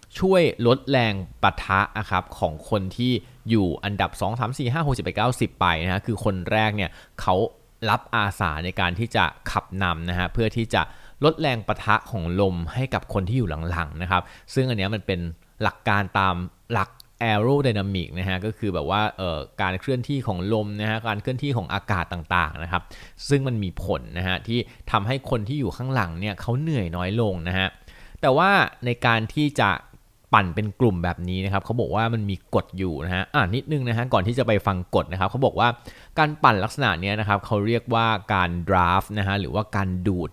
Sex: male